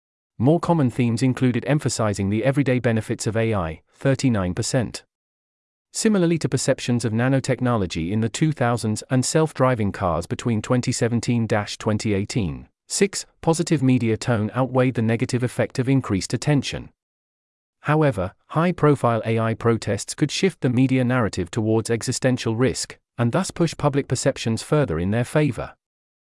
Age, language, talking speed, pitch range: 40-59, English, 130 wpm, 110-140 Hz